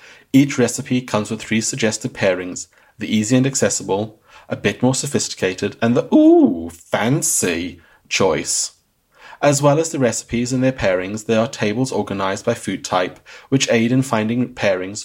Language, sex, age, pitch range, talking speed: English, male, 30-49, 105-130 Hz, 160 wpm